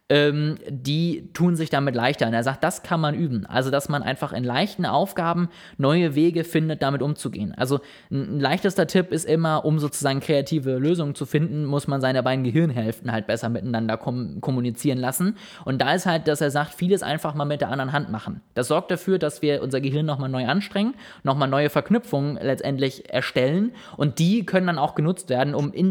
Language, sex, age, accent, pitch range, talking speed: German, male, 20-39, German, 130-155 Hz, 200 wpm